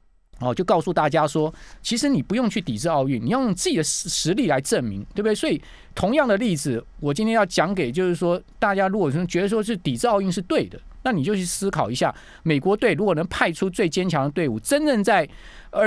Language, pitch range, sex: Chinese, 135-185 Hz, male